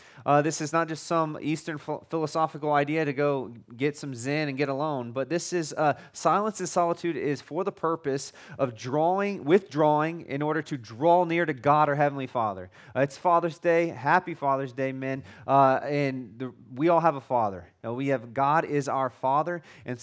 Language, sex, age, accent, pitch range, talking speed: English, male, 30-49, American, 135-170 Hz, 200 wpm